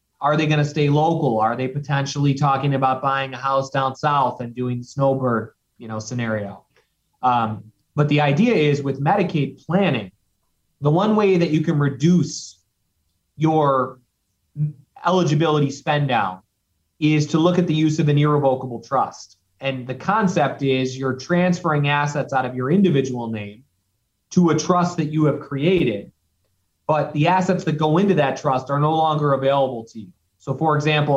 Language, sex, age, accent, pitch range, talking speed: English, male, 30-49, American, 125-155 Hz, 160 wpm